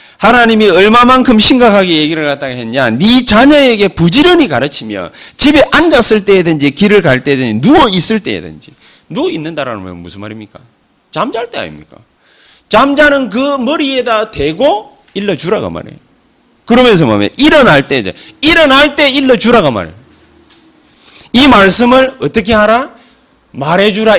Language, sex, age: Korean, male, 30-49